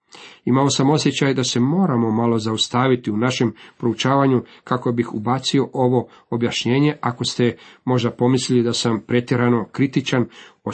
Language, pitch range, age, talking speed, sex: Croatian, 115-145 Hz, 40-59, 140 wpm, male